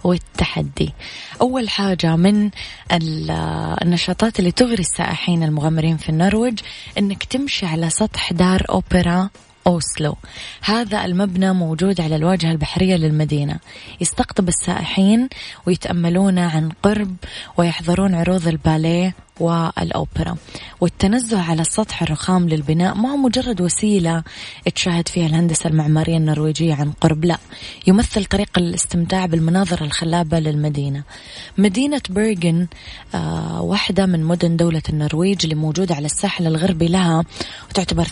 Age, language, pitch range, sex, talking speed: 20-39, Arabic, 155-185 Hz, female, 110 wpm